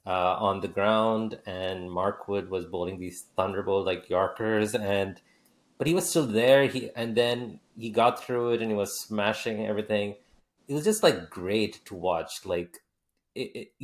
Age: 30-49